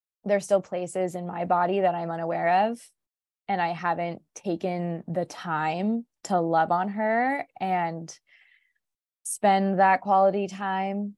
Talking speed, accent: 135 wpm, American